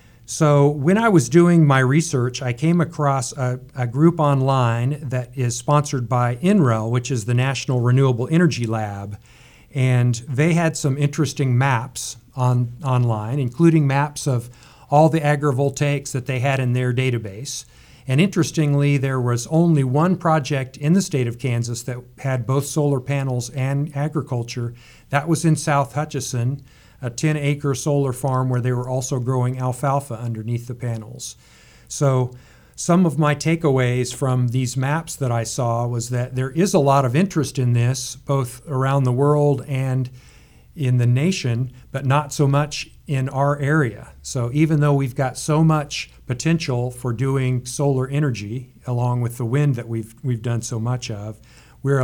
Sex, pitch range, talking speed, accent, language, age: male, 125-145 Hz, 165 wpm, American, English, 50-69